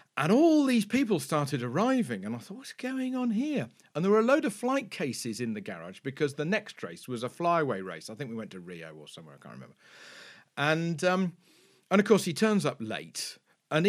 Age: 50-69